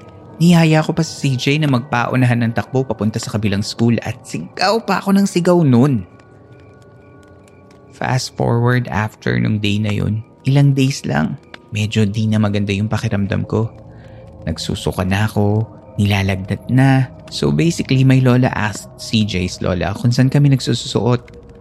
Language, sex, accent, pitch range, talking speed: Filipino, male, native, 105-125 Hz, 145 wpm